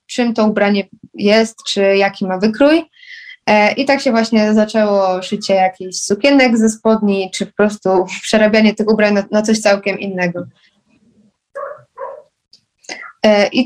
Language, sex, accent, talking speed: Polish, female, native, 130 wpm